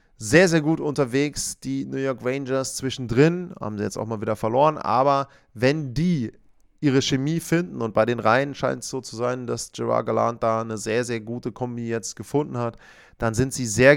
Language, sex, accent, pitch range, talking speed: German, male, German, 115-145 Hz, 200 wpm